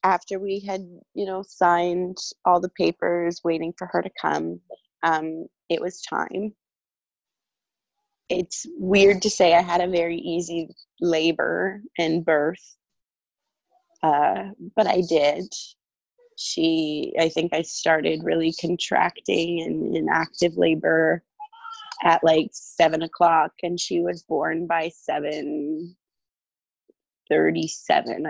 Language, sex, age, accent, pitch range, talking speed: English, female, 20-39, American, 160-195 Hz, 115 wpm